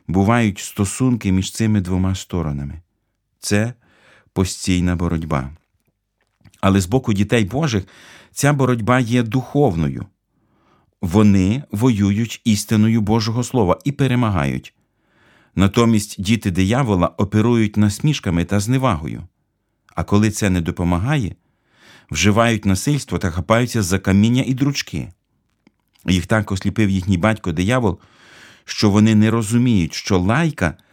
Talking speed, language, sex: 110 wpm, Ukrainian, male